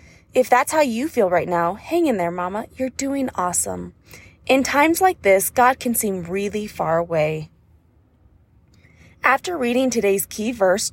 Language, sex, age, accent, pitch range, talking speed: English, female, 20-39, American, 185-270 Hz, 160 wpm